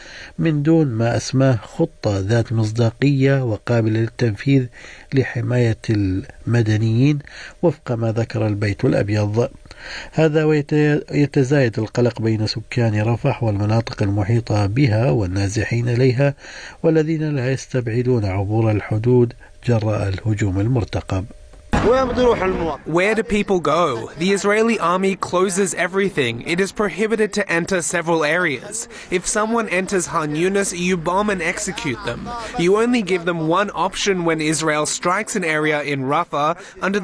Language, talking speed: Arabic, 120 wpm